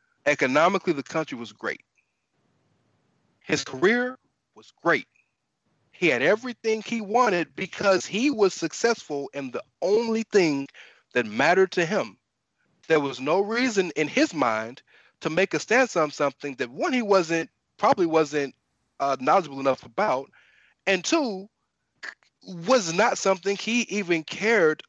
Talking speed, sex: 135 wpm, male